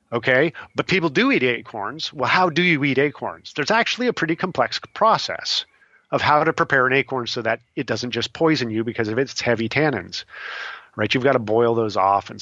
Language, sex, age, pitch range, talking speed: English, male, 40-59, 110-135 Hz, 215 wpm